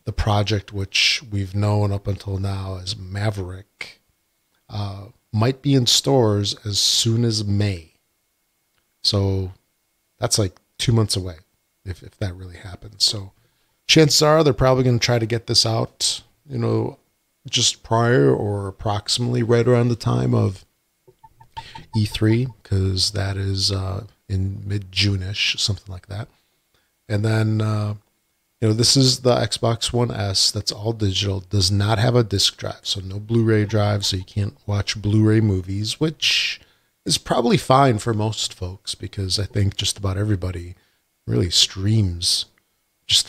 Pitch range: 100-115 Hz